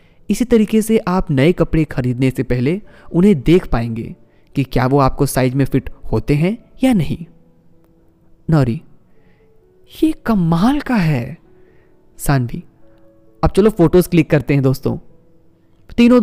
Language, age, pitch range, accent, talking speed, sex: Hindi, 20-39, 135-180 Hz, native, 135 wpm, male